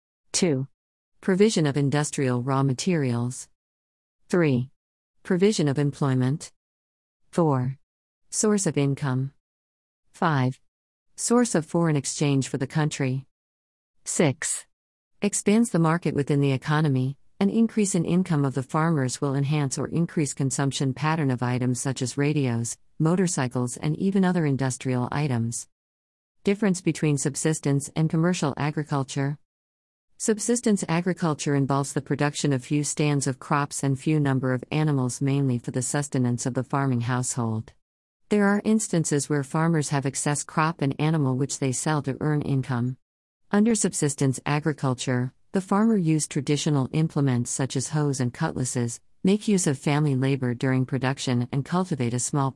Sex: female